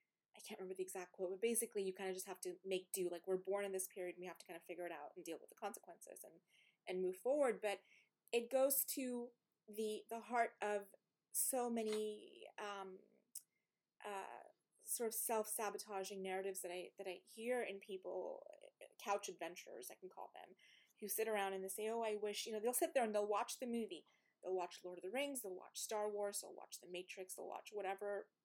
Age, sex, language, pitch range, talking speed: 20-39, female, English, 190-225 Hz, 220 wpm